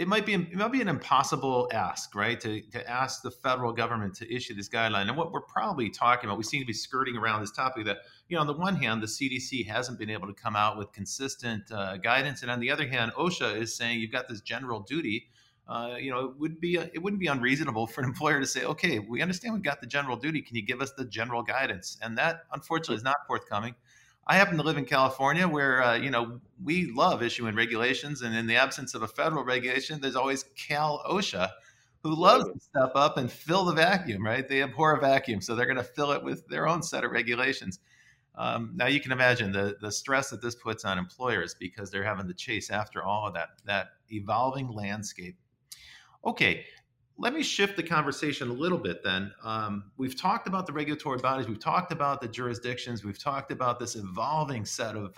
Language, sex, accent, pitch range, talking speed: English, male, American, 110-140 Hz, 225 wpm